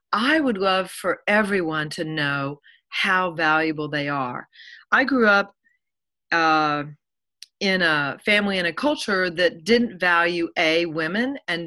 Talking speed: 140 wpm